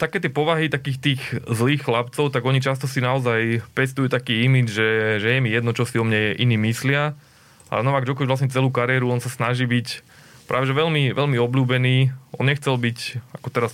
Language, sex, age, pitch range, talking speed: Slovak, male, 20-39, 110-130 Hz, 195 wpm